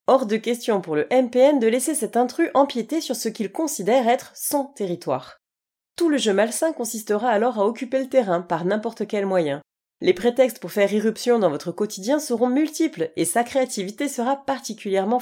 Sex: female